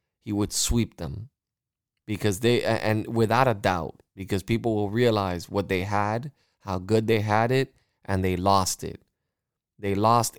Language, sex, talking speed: English, male, 160 wpm